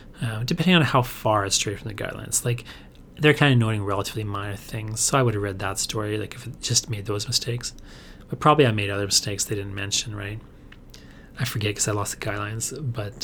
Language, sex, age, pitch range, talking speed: English, male, 30-49, 105-130 Hz, 225 wpm